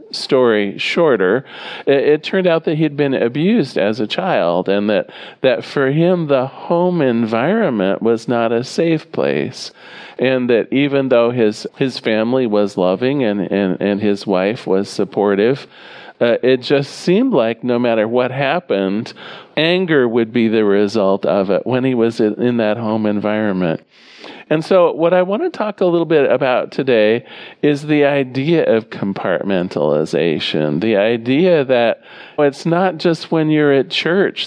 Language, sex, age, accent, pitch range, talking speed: English, male, 40-59, American, 105-145 Hz, 155 wpm